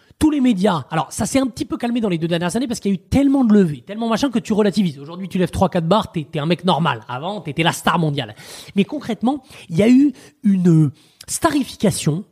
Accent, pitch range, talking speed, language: French, 145-210 Hz, 245 wpm, French